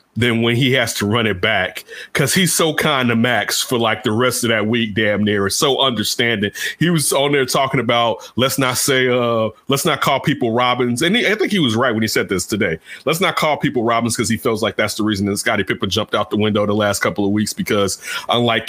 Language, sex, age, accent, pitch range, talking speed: English, male, 30-49, American, 105-130 Hz, 250 wpm